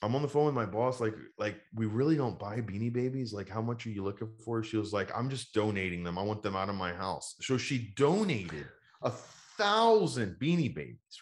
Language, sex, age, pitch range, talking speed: English, male, 30-49, 90-125 Hz, 230 wpm